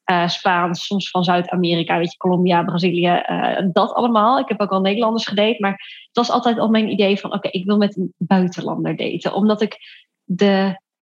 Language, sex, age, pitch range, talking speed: Dutch, female, 20-39, 190-235 Hz, 190 wpm